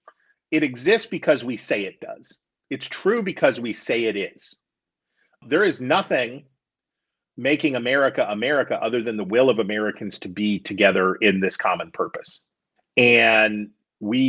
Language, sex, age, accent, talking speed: English, male, 40-59, American, 145 wpm